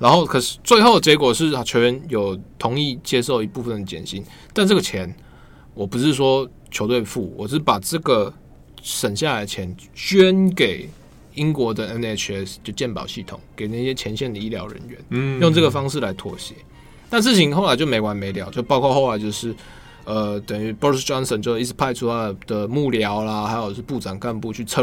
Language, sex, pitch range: Chinese, male, 105-140 Hz